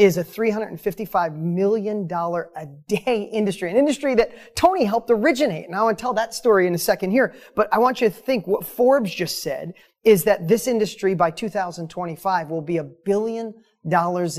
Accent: American